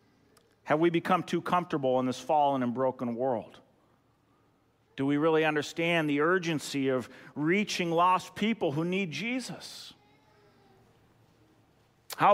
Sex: male